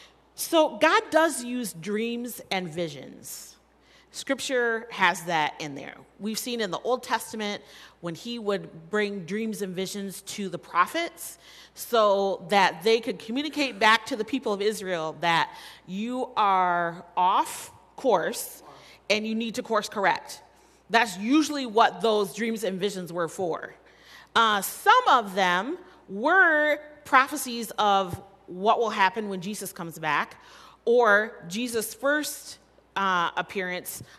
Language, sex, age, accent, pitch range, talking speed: English, female, 30-49, American, 185-245 Hz, 135 wpm